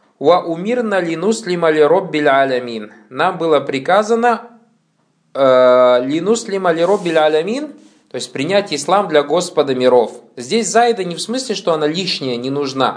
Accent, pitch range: native, 125-180 Hz